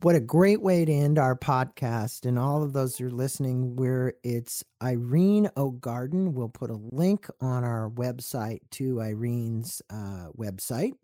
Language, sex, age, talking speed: English, male, 40-59, 165 wpm